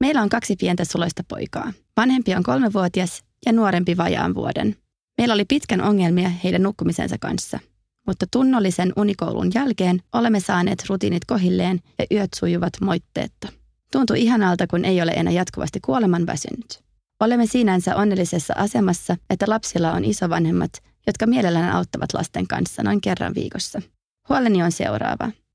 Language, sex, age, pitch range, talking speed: Finnish, female, 30-49, 175-220 Hz, 145 wpm